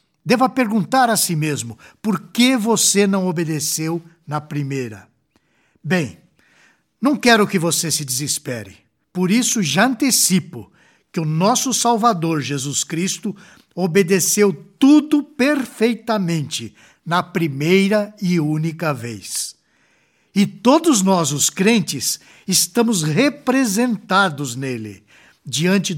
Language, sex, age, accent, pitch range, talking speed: Portuguese, male, 60-79, Brazilian, 145-220 Hz, 105 wpm